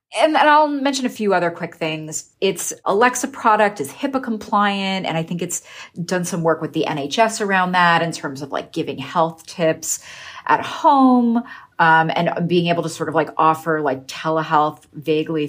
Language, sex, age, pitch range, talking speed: English, female, 30-49, 160-255 Hz, 185 wpm